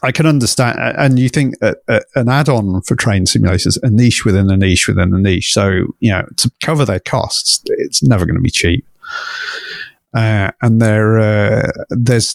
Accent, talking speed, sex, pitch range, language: British, 190 wpm, male, 100-125 Hz, English